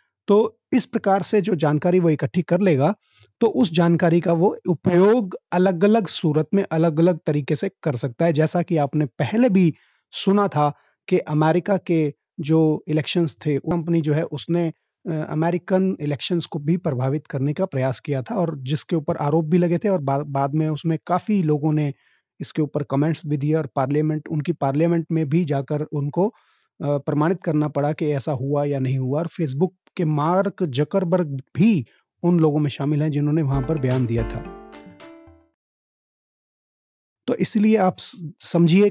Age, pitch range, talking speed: 30-49, 150-185 Hz, 170 wpm